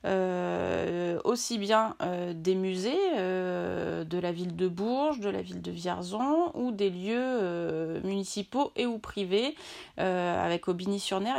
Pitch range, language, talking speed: 195-245 Hz, French, 155 wpm